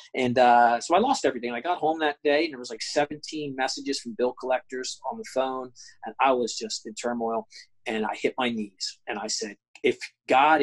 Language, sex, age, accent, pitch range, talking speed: English, male, 30-49, American, 120-150 Hz, 220 wpm